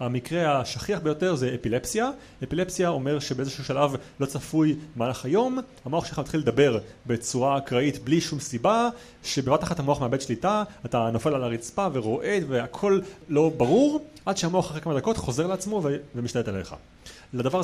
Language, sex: Hebrew, male